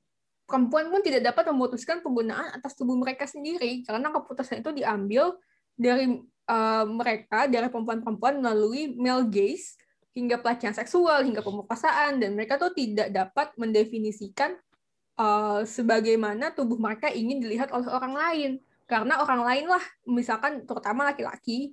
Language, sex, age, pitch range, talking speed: Indonesian, female, 10-29, 215-270 Hz, 135 wpm